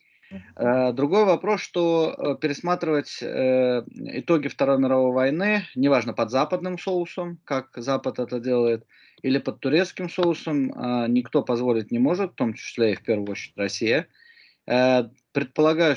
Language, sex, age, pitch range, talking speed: Russian, male, 20-39, 115-150 Hz, 125 wpm